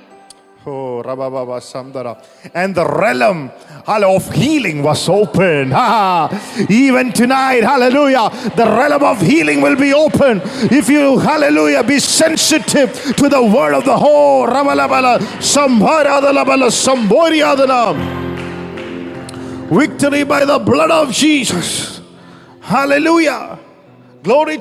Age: 50-69